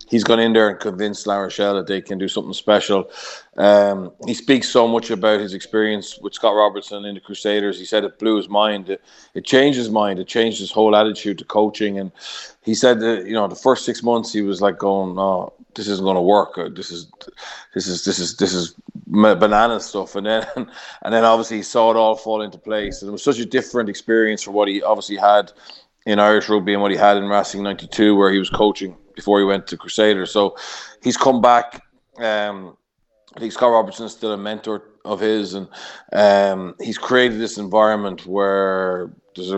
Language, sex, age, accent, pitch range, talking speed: English, male, 30-49, Irish, 100-110 Hz, 215 wpm